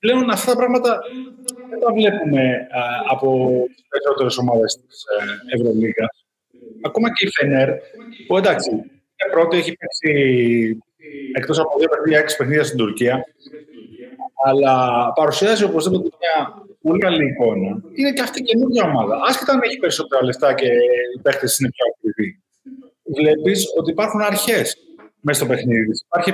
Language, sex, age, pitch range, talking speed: Greek, male, 30-49, 140-230 Hz, 140 wpm